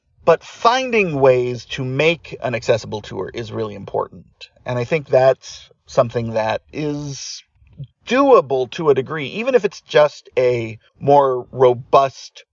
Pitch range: 125-205 Hz